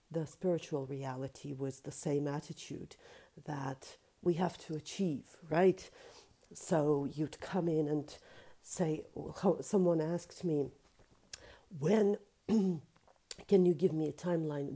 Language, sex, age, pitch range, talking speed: English, female, 50-69, 155-220 Hz, 120 wpm